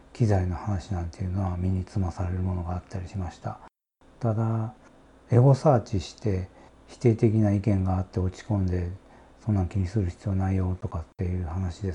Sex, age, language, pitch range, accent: male, 40-59, Japanese, 90-110 Hz, native